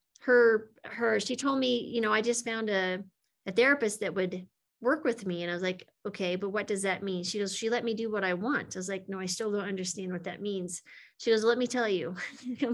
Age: 30-49